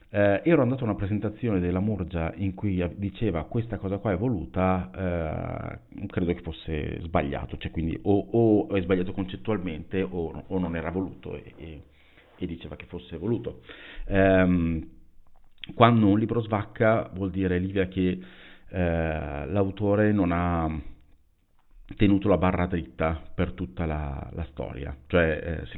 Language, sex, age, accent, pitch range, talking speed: Italian, male, 50-69, native, 80-100 Hz, 145 wpm